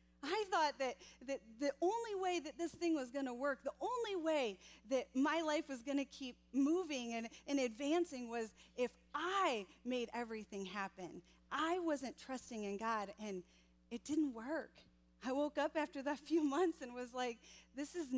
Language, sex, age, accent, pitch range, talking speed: English, female, 30-49, American, 215-295 Hz, 180 wpm